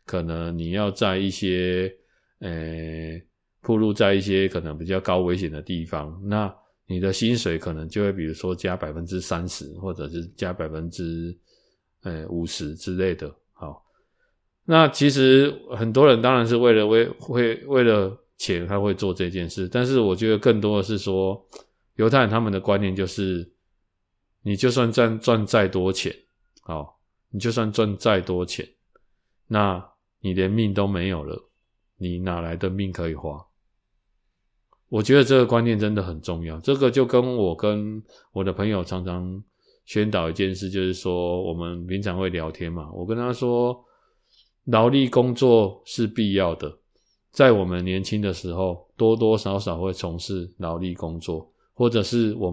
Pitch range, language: 90-115 Hz, Chinese